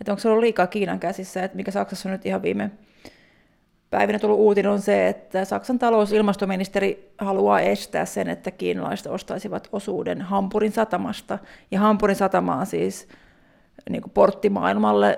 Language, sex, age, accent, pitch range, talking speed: Finnish, female, 30-49, native, 195-225 Hz, 145 wpm